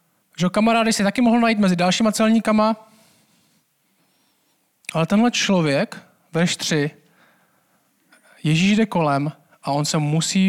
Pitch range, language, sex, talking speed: 160-195 Hz, Czech, male, 115 wpm